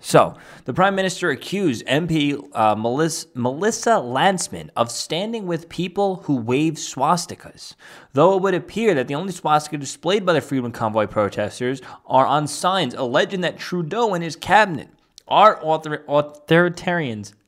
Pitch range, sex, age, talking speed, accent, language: 125-170 Hz, male, 20-39, 150 wpm, American, English